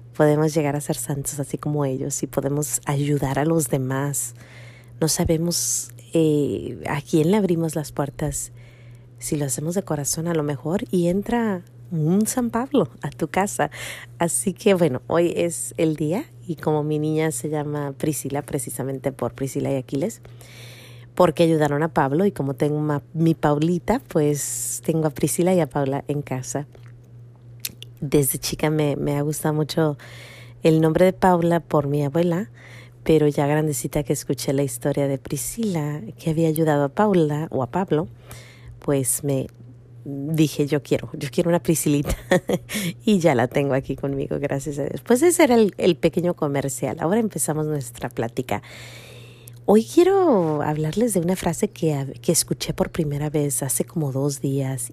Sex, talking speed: female, 165 wpm